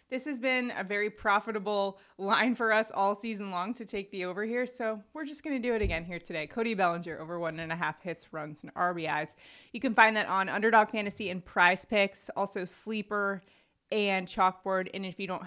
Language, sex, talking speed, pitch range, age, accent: English, female, 215 wpm, 180-230 Hz, 20-39, American